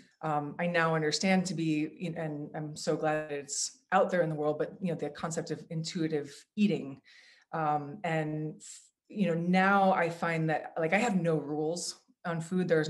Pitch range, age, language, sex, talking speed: 160-200 Hz, 20-39, English, female, 185 wpm